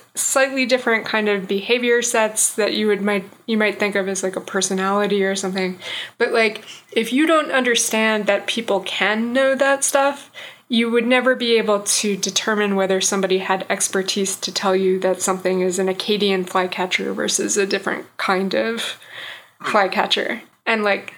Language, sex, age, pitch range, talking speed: English, female, 20-39, 195-215 Hz, 170 wpm